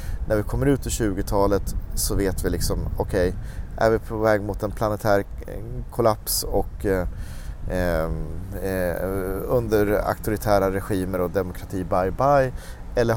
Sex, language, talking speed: male, Swedish, 135 wpm